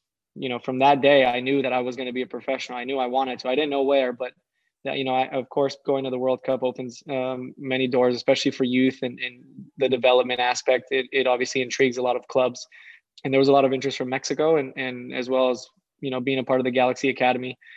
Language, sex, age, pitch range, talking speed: English, male, 20-39, 125-135 Hz, 265 wpm